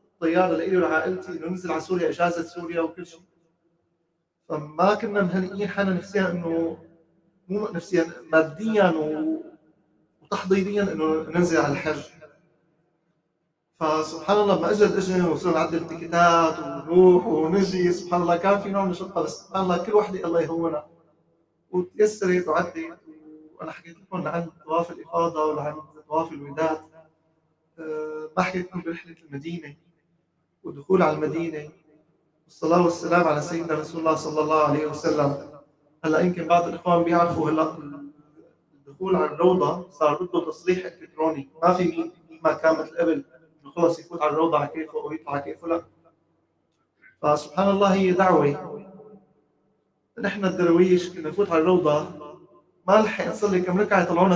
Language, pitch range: Arabic, 155-180 Hz